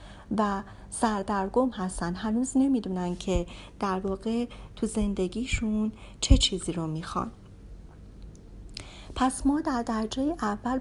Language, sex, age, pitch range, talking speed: English, female, 40-59, 195-255 Hz, 105 wpm